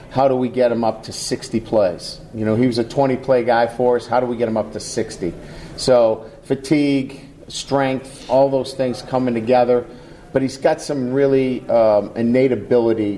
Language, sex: English, male